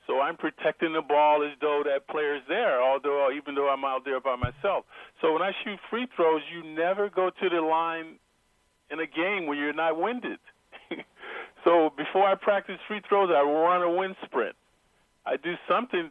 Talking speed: 190 wpm